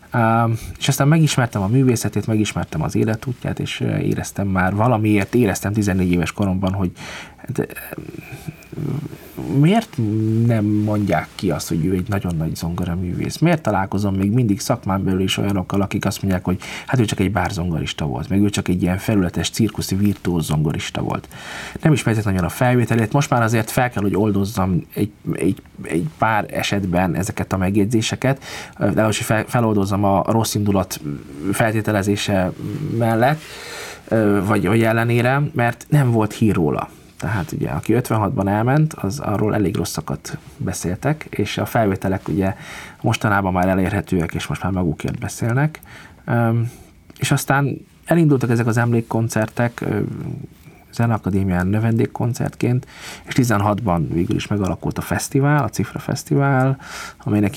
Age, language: 20-39, Hungarian